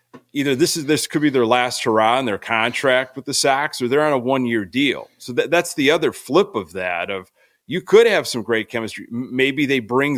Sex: male